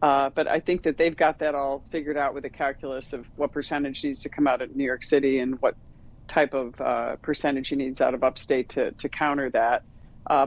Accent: American